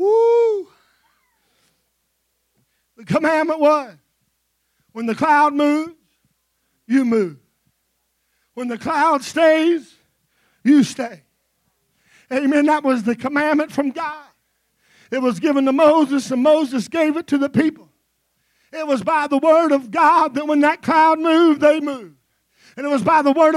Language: English